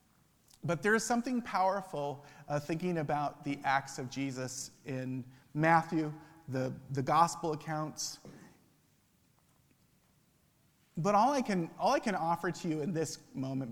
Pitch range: 140-170 Hz